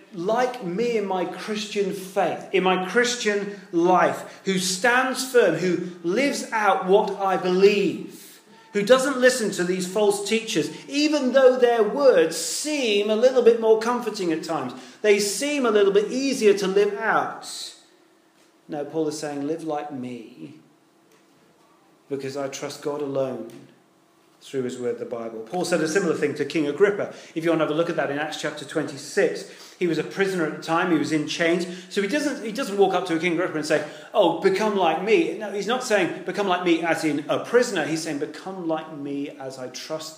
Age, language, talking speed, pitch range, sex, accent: 30-49, English, 195 wpm, 155-225 Hz, male, British